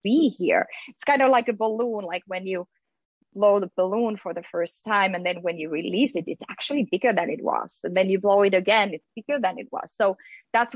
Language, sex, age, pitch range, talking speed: English, female, 20-39, 185-225 Hz, 240 wpm